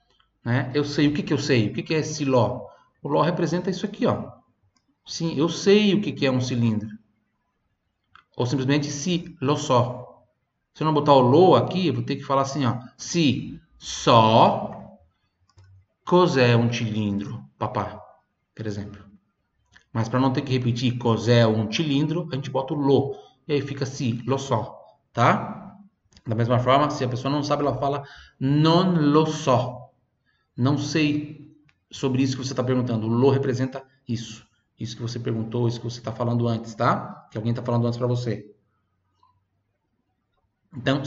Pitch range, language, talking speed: 115-145 Hz, Italian, 180 wpm